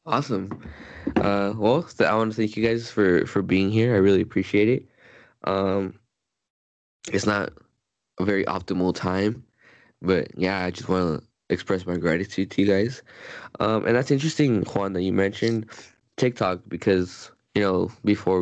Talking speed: 165 wpm